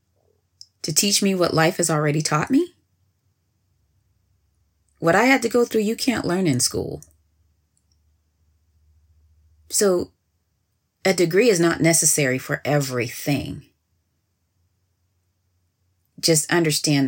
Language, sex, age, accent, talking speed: English, female, 30-49, American, 105 wpm